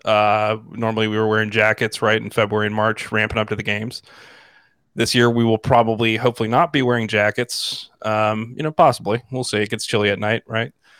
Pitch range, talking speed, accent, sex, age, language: 105-115 Hz, 205 wpm, American, male, 20-39, English